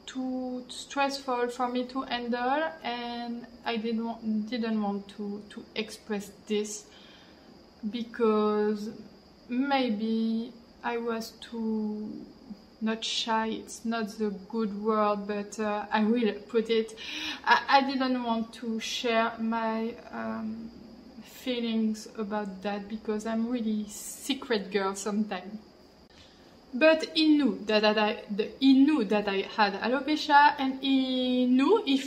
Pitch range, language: 215-260 Hz, English